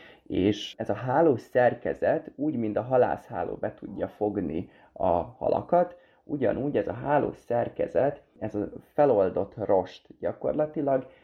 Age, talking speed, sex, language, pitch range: 20-39, 125 wpm, male, Hungarian, 100-130 Hz